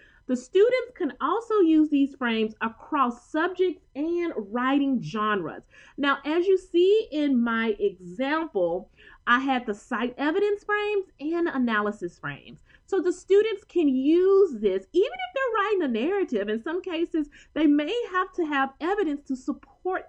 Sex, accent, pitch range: female, American, 230-355 Hz